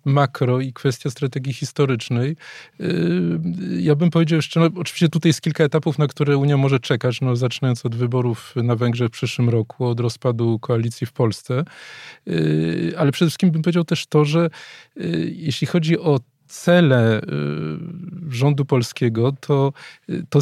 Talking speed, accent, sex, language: 145 wpm, native, male, Polish